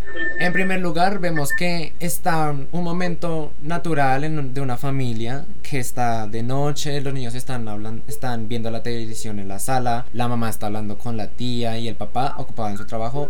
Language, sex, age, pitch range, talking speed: Spanish, male, 20-39, 120-155 Hz, 190 wpm